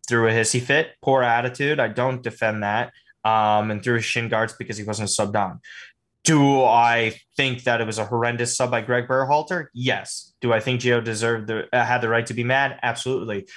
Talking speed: 210 wpm